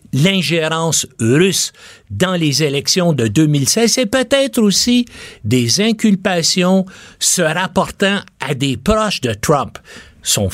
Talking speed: 115 wpm